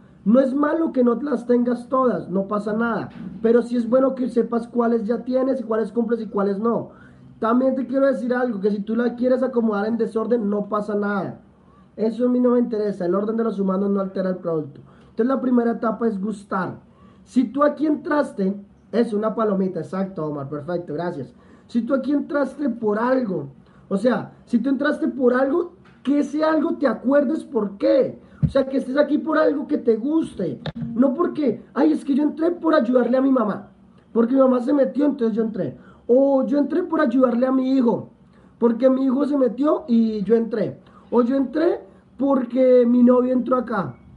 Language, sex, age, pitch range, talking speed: English, male, 30-49, 215-265 Hz, 200 wpm